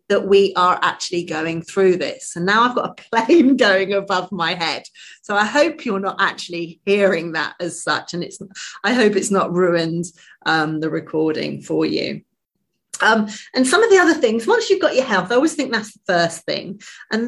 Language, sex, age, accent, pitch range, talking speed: English, female, 30-49, British, 180-250 Hz, 205 wpm